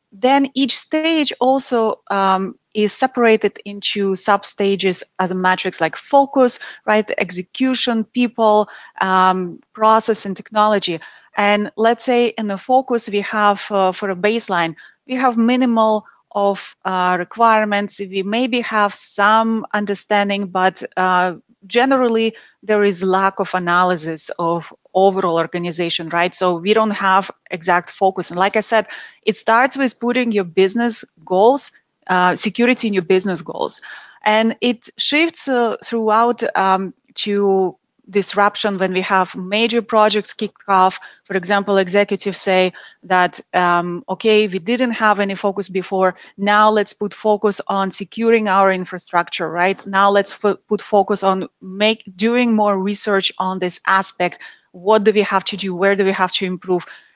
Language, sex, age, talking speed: English, female, 30-49, 150 wpm